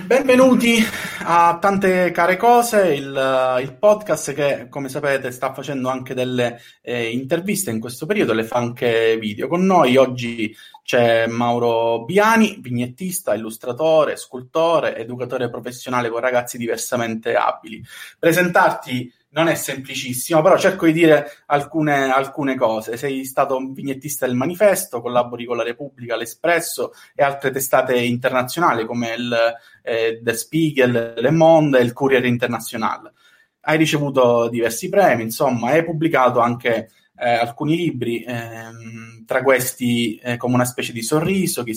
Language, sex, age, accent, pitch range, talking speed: Italian, male, 20-39, native, 120-155 Hz, 140 wpm